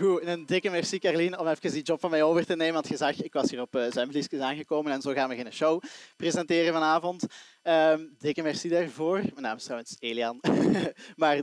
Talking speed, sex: 225 wpm, male